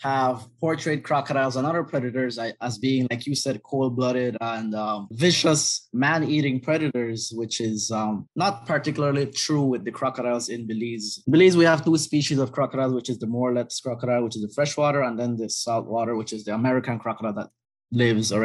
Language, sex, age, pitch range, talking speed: English, male, 20-39, 115-140 Hz, 185 wpm